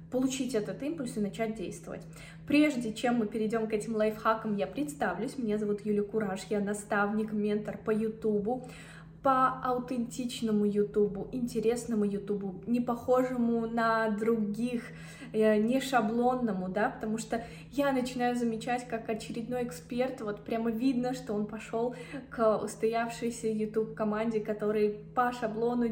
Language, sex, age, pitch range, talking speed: Russian, female, 20-39, 205-235 Hz, 130 wpm